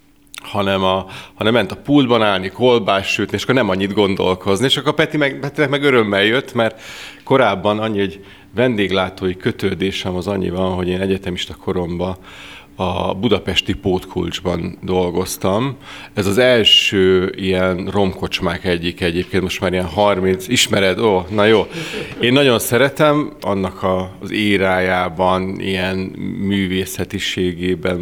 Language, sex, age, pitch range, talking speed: Hungarian, male, 30-49, 90-105 Hz, 135 wpm